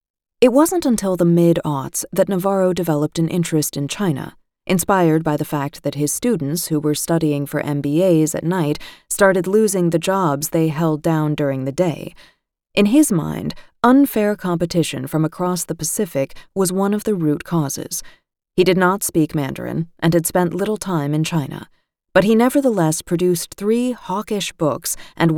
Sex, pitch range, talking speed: female, 155-195 Hz, 170 wpm